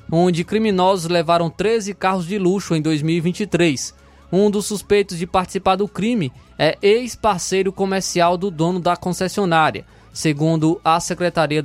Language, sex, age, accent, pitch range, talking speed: Portuguese, male, 20-39, Brazilian, 165-200 Hz, 135 wpm